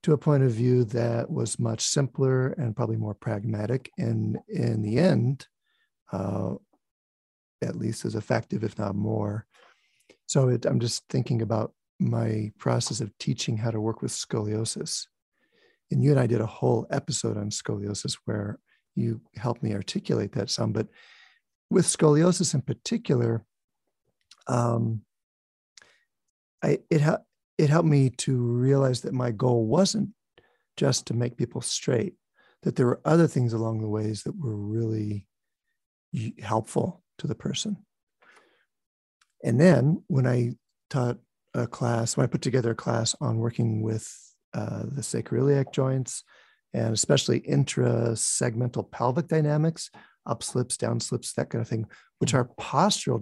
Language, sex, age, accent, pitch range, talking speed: English, male, 50-69, American, 110-140 Hz, 145 wpm